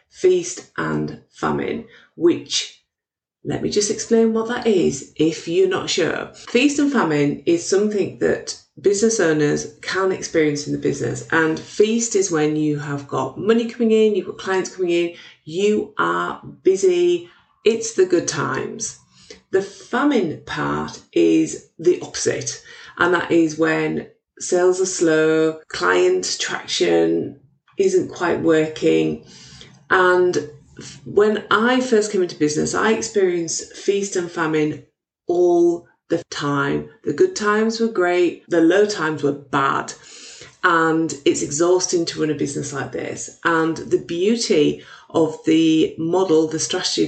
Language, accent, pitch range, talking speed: English, British, 155-255 Hz, 140 wpm